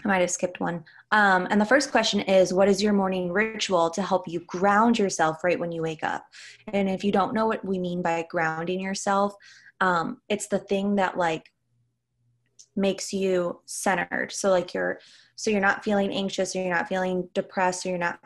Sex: female